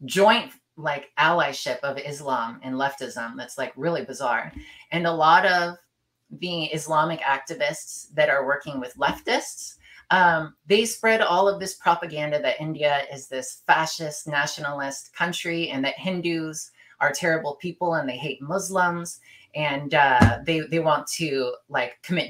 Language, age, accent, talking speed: English, 30-49, American, 150 wpm